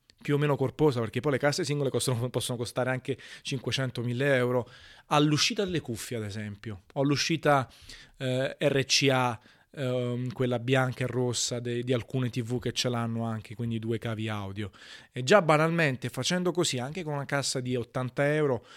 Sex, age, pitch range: male, 30-49, 115-140 Hz